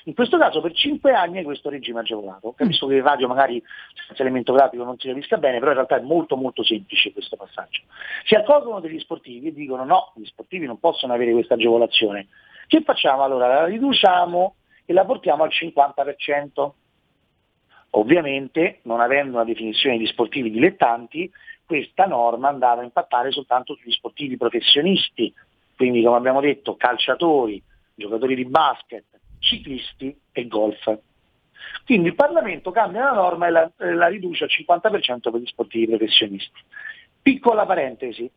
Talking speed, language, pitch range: 160 wpm, Italian, 120-185 Hz